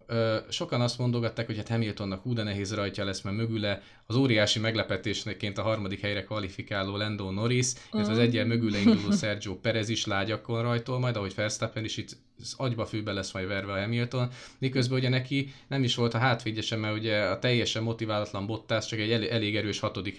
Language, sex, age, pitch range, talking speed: Hungarian, male, 20-39, 110-130 Hz, 185 wpm